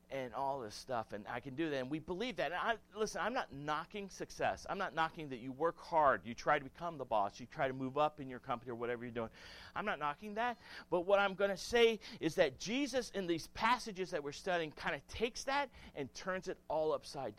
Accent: American